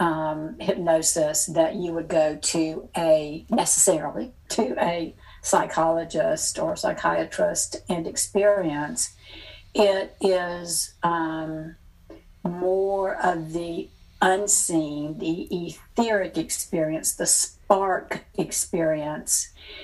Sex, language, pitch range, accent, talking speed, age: female, English, 160-200 Hz, American, 90 wpm, 60-79